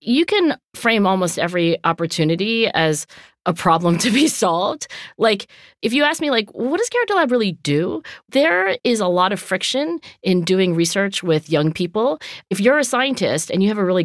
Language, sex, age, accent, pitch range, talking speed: English, female, 40-59, American, 165-230 Hz, 190 wpm